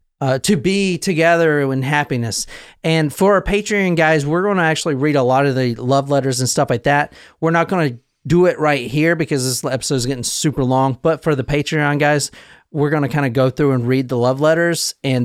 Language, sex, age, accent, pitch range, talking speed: English, male, 30-49, American, 135-175 Hz, 230 wpm